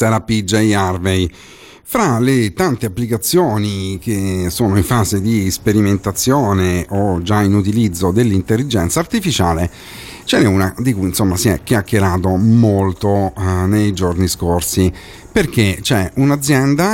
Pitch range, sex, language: 95-115 Hz, male, Italian